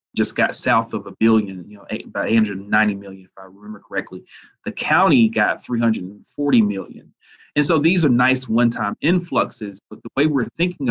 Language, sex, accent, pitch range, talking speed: English, male, American, 110-135 Hz, 180 wpm